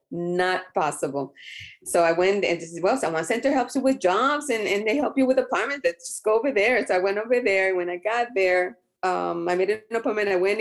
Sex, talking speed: female, 245 wpm